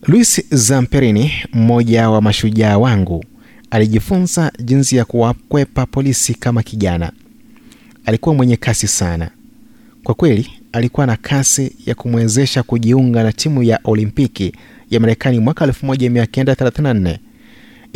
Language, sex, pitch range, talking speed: Swahili, male, 110-140 Hz, 115 wpm